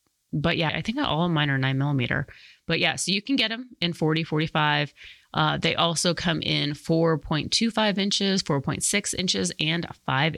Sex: female